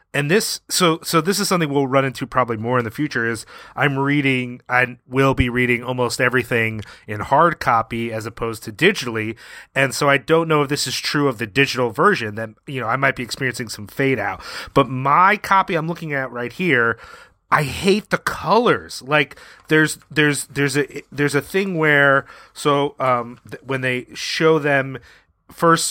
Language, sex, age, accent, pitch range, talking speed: English, male, 30-49, American, 125-150 Hz, 190 wpm